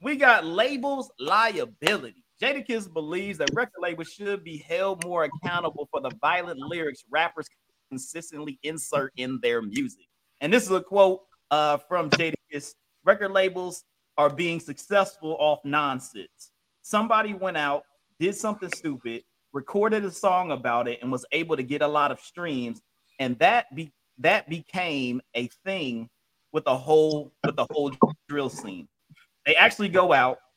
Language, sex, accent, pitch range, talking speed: English, male, American, 145-210 Hz, 155 wpm